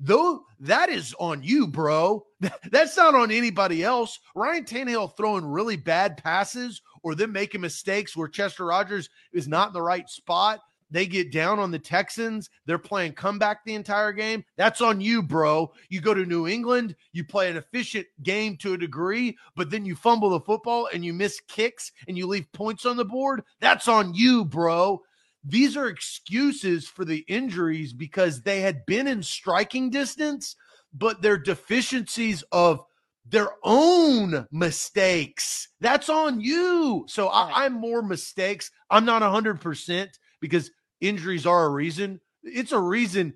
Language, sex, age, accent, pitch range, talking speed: English, male, 30-49, American, 170-230 Hz, 165 wpm